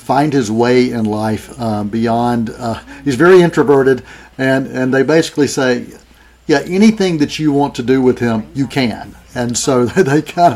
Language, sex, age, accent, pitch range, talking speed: English, male, 50-69, American, 110-130 Hz, 175 wpm